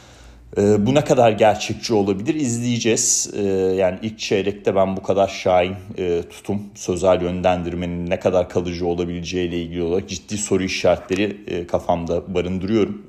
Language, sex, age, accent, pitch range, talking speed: Turkish, male, 30-49, native, 85-105 Hz, 145 wpm